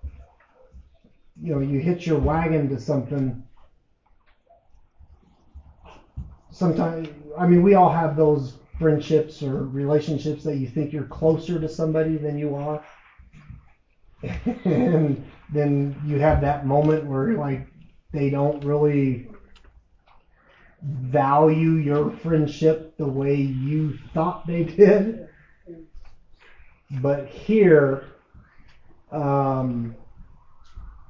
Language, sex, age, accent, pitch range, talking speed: English, male, 30-49, American, 135-155 Hz, 100 wpm